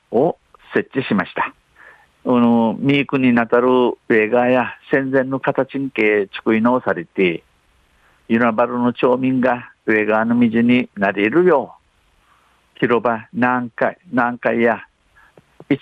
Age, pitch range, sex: 50-69, 110-135 Hz, male